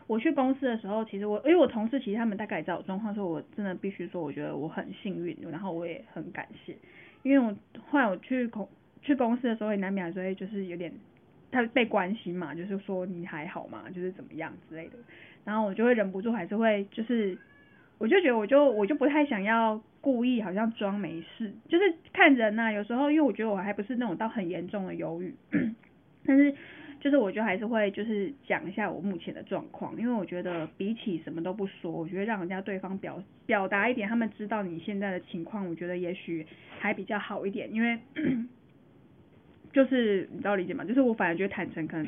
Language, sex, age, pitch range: Chinese, female, 10-29, 185-230 Hz